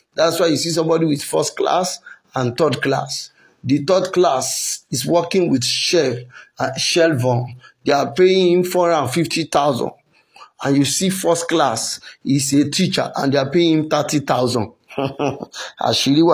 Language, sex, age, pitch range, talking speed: English, male, 50-69, 160-210 Hz, 145 wpm